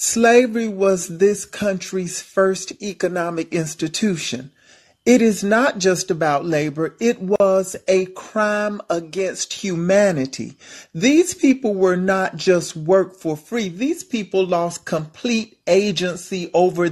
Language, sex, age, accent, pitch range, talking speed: English, male, 40-59, American, 180-220 Hz, 115 wpm